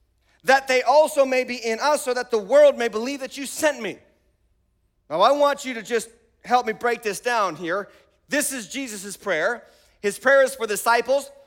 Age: 40-59